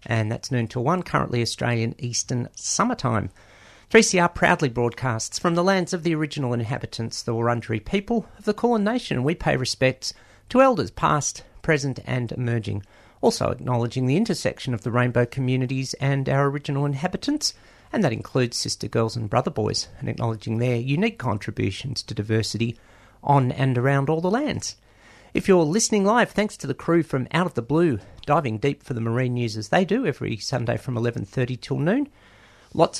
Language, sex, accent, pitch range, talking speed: English, male, Australian, 120-170 Hz, 175 wpm